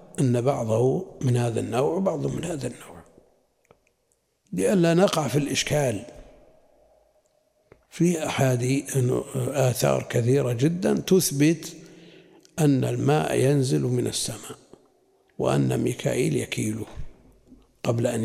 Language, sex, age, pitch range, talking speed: Arabic, male, 60-79, 120-150 Hz, 95 wpm